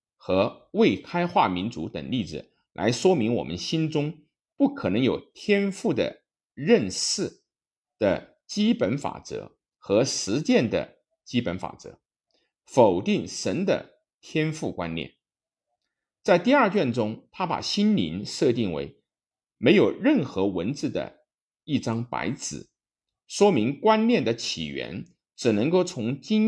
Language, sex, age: Chinese, male, 50-69